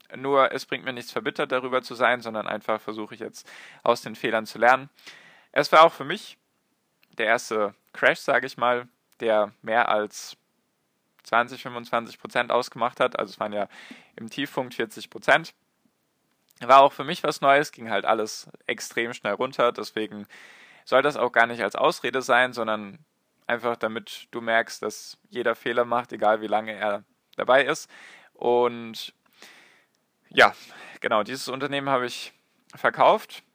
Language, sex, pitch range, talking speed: German, male, 105-125 Hz, 160 wpm